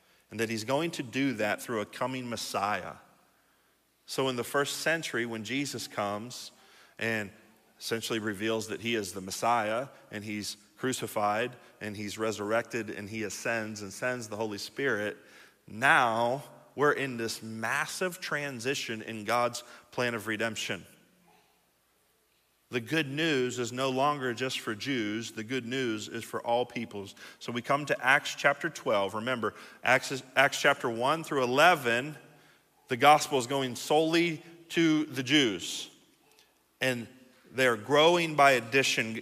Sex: male